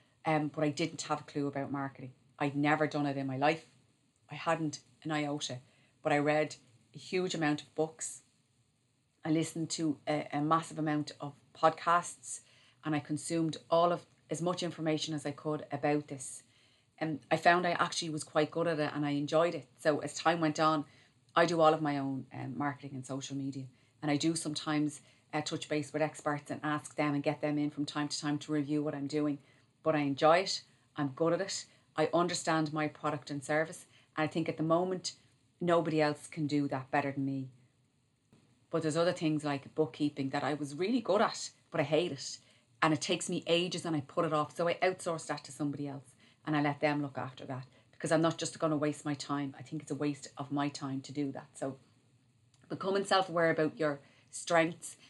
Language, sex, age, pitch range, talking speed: English, female, 30-49, 135-155 Hz, 215 wpm